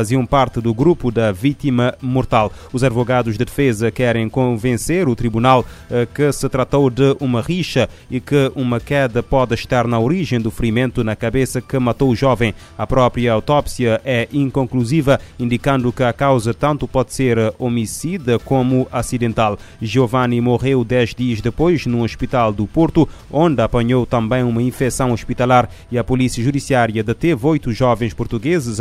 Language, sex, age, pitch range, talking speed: Portuguese, male, 20-39, 115-135 Hz, 155 wpm